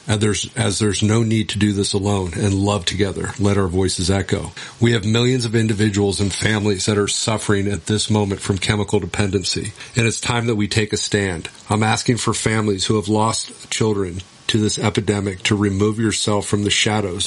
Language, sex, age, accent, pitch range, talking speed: English, male, 50-69, American, 100-110 Hz, 200 wpm